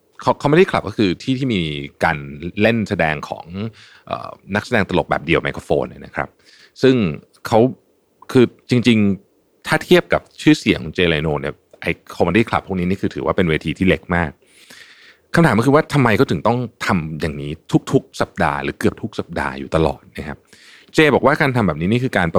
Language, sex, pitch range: Thai, male, 85-120 Hz